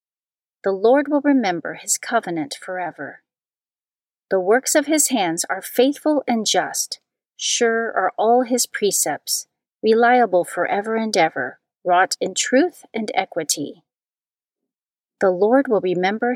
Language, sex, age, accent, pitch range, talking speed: English, female, 40-59, American, 185-270 Hz, 125 wpm